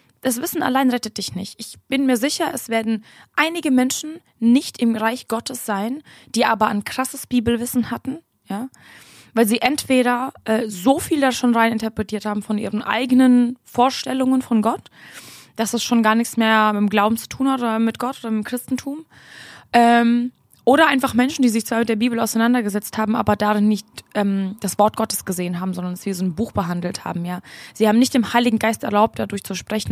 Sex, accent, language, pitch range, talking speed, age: female, German, German, 210-250 Hz, 205 wpm, 20-39